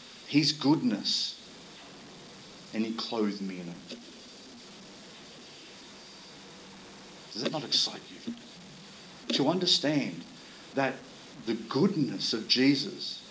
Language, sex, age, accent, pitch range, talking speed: English, male, 40-59, Australian, 125-165 Hz, 90 wpm